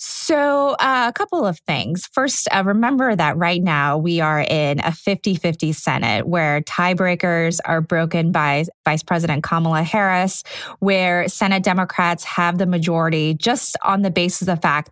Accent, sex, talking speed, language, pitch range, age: American, female, 160 wpm, English, 165-195 Hz, 20-39